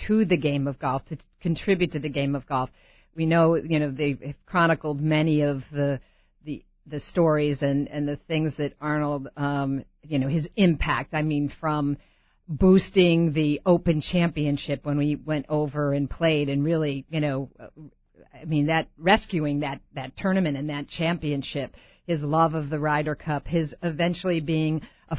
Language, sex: English, female